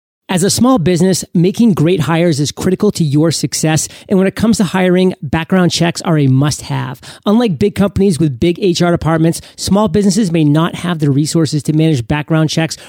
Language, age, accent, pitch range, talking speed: English, 30-49, American, 160-195 Hz, 190 wpm